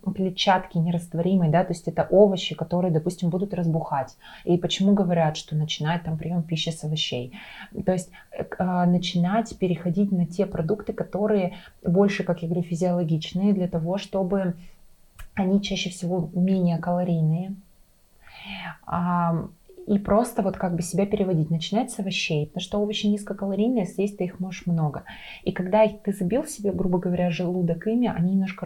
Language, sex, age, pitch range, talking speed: Russian, female, 20-39, 170-205 Hz, 155 wpm